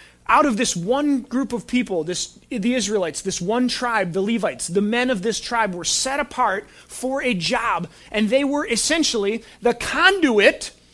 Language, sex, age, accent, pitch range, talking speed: English, male, 30-49, American, 225-295 Hz, 175 wpm